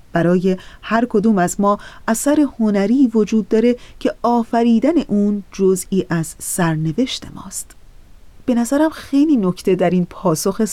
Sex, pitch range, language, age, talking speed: female, 185-230 Hz, Persian, 30-49, 130 wpm